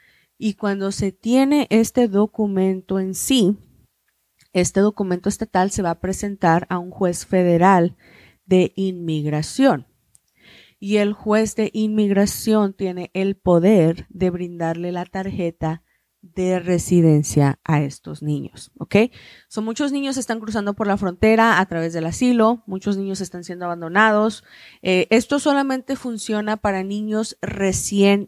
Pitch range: 175-210 Hz